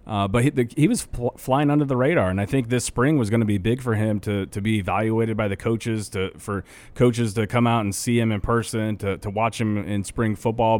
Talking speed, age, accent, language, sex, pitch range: 265 wpm, 30-49, American, English, male, 100-115 Hz